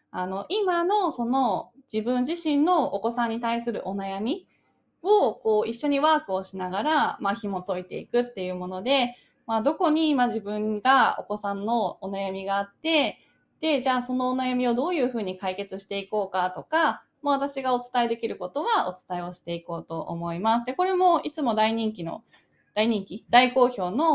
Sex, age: female, 20-39